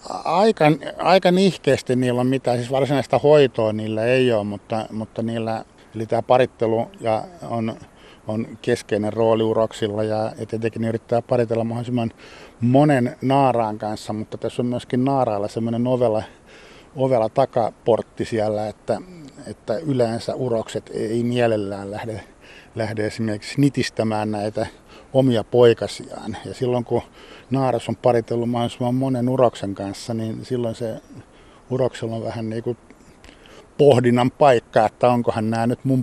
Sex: male